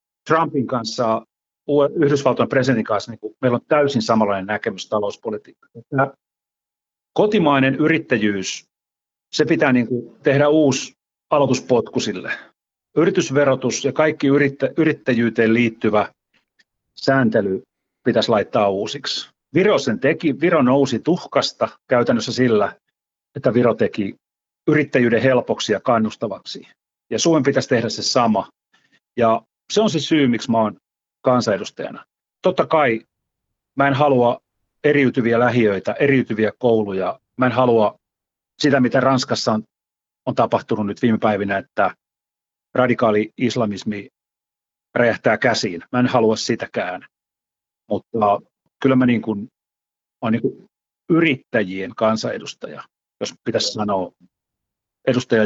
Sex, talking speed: male, 115 wpm